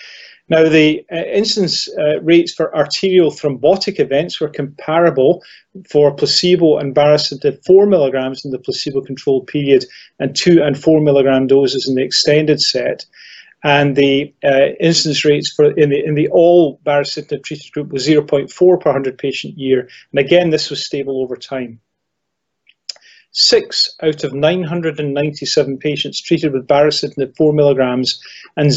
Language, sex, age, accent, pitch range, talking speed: English, male, 30-49, British, 140-165 Hz, 145 wpm